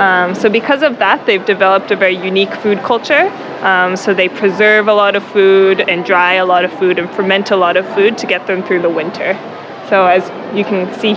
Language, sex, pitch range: English, female, 190-235 Hz